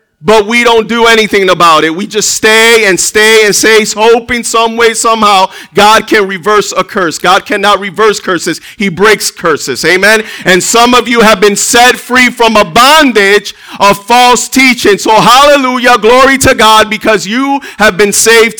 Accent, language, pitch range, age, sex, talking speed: American, English, 205-235 Hz, 40-59, male, 175 wpm